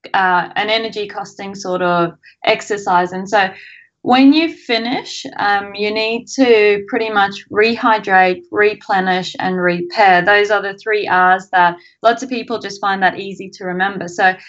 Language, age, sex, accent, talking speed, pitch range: English, 20-39, female, Australian, 155 wpm, 190-235 Hz